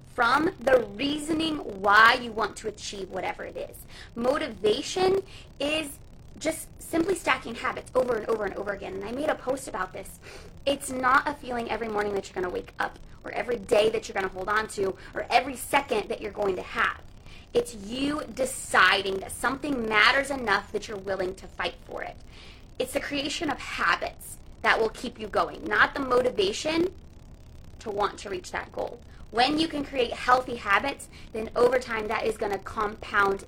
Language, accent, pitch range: English, American, 205-285 Hz